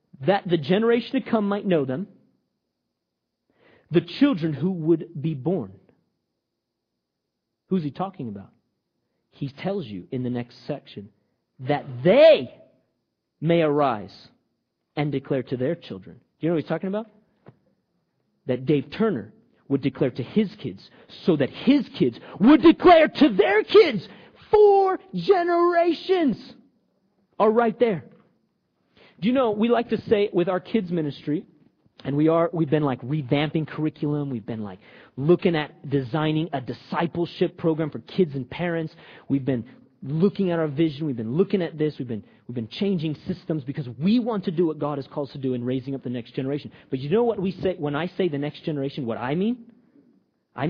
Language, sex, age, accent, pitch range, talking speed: English, male, 40-59, American, 135-195 Hz, 170 wpm